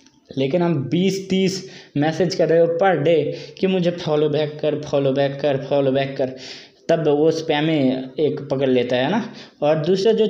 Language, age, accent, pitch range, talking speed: Hindi, 20-39, native, 150-195 Hz, 180 wpm